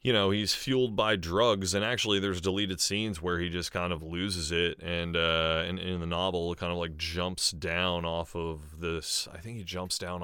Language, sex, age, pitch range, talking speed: English, male, 30-49, 85-100 Hz, 225 wpm